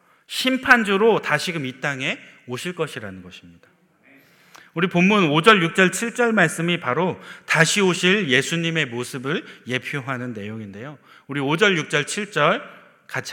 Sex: male